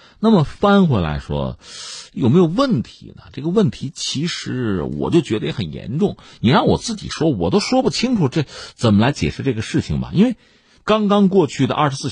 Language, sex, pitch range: Chinese, male, 105-175 Hz